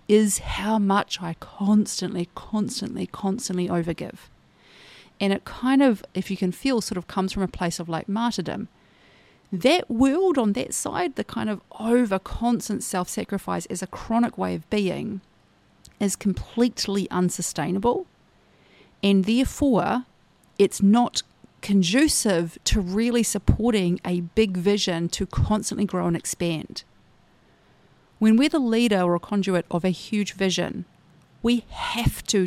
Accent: Australian